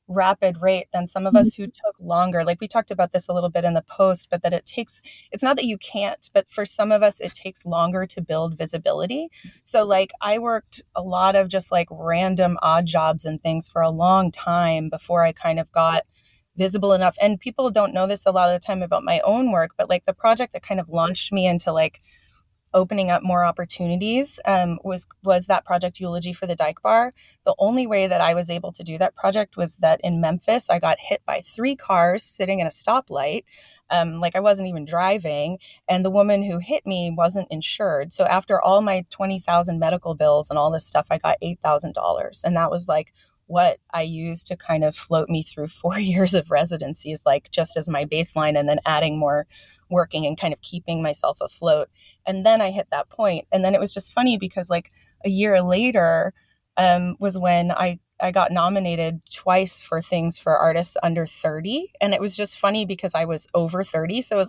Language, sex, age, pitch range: English, female, 20-39, 165-205 Hz